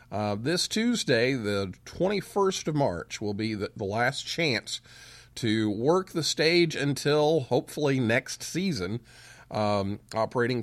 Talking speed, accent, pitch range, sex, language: 130 wpm, American, 105-145 Hz, male, English